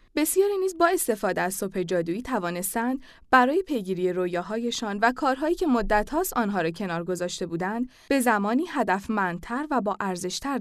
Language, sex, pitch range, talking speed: Persian, female, 195-280 Hz, 155 wpm